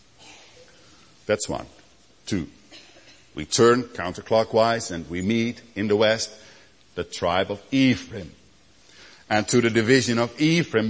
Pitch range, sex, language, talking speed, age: 105-135 Hz, male, English, 120 wpm, 50-69